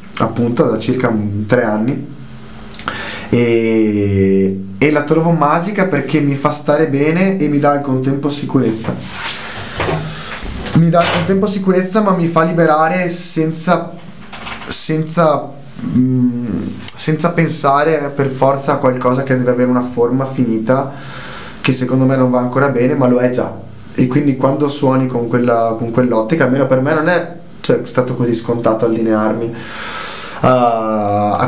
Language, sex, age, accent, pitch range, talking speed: Italian, male, 20-39, native, 115-145 Hz, 145 wpm